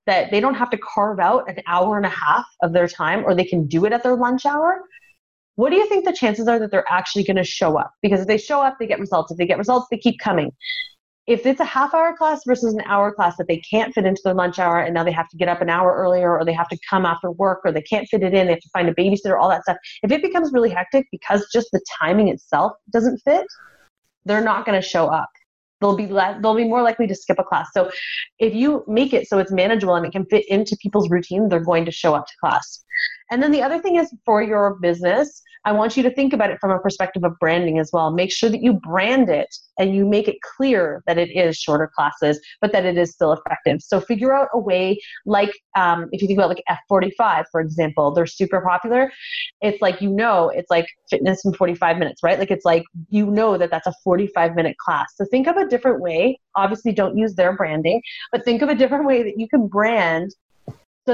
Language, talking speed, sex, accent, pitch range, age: English, 255 wpm, female, American, 180-240 Hz, 30-49